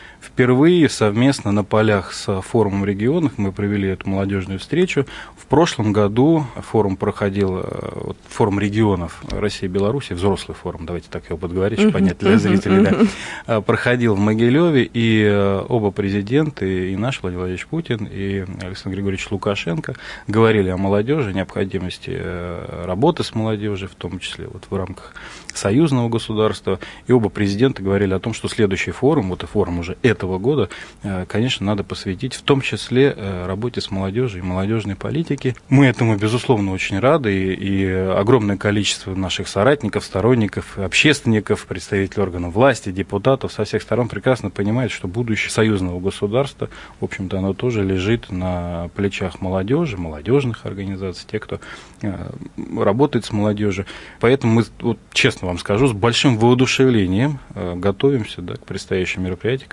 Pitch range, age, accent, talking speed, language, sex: 95-120 Hz, 20-39, native, 145 wpm, Russian, male